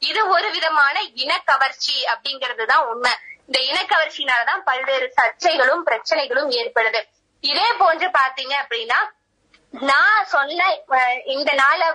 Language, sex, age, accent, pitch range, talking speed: Tamil, female, 20-39, native, 250-325 Hz, 65 wpm